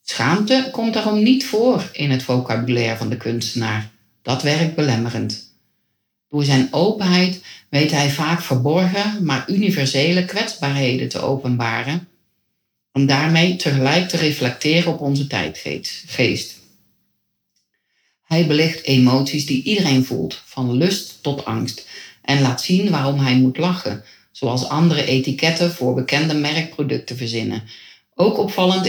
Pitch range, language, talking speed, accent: 130-165 Hz, Dutch, 125 wpm, Dutch